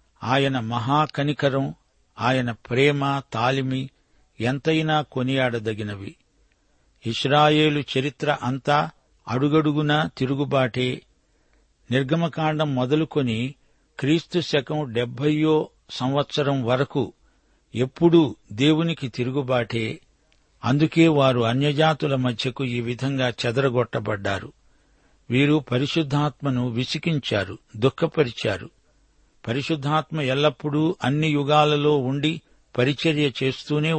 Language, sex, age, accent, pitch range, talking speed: Telugu, male, 60-79, native, 120-150 Hz, 70 wpm